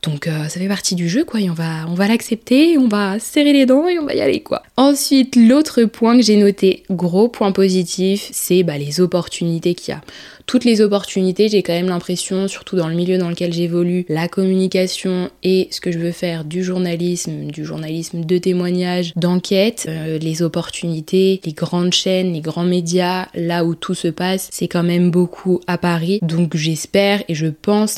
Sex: female